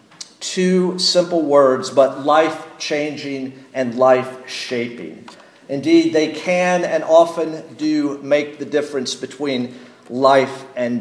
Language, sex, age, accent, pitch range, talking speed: English, male, 50-69, American, 145-185 Hz, 115 wpm